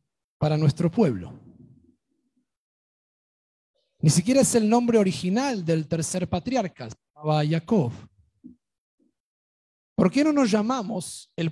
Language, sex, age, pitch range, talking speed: Spanish, male, 40-59, 145-225 Hz, 100 wpm